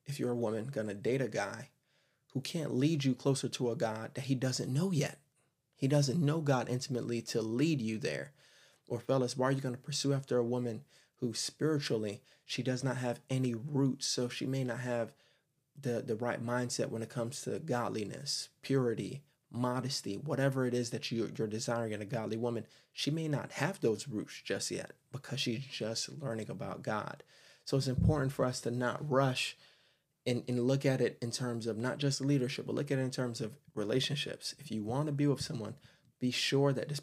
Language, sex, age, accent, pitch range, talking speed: English, male, 30-49, American, 115-140 Hz, 205 wpm